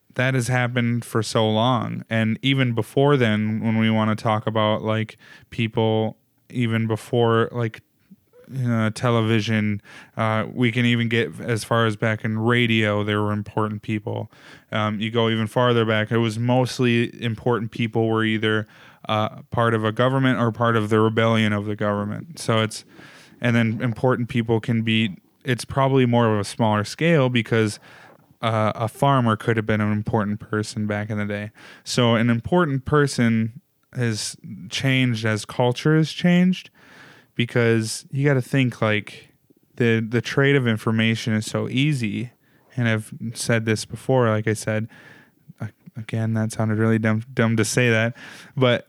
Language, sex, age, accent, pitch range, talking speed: English, male, 20-39, American, 110-125 Hz, 165 wpm